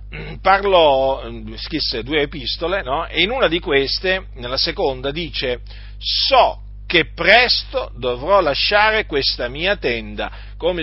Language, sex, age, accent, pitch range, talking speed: Italian, male, 50-69, native, 135-215 Hz, 120 wpm